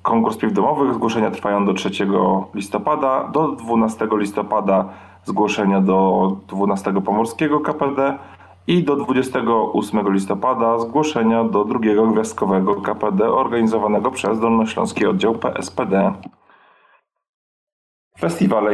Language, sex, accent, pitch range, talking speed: Polish, male, native, 100-120 Hz, 100 wpm